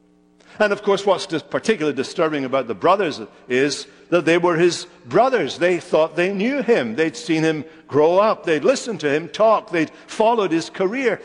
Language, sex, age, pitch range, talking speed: English, male, 60-79, 125-210 Hz, 185 wpm